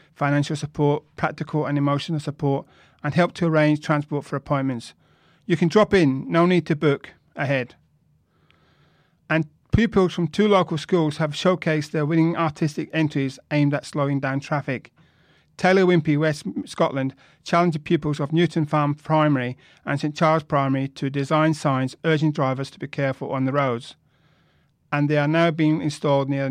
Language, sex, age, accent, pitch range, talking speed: English, male, 40-59, British, 140-160 Hz, 165 wpm